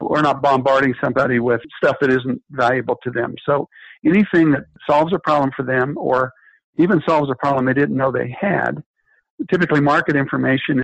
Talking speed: 175 wpm